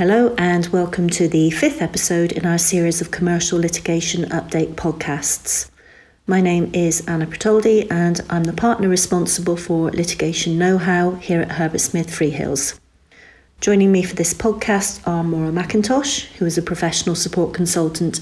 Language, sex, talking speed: English, female, 155 wpm